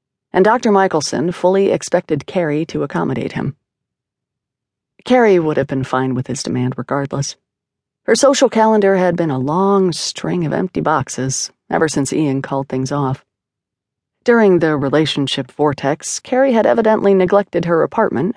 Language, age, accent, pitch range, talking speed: English, 40-59, American, 135-190 Hz, 145 wpm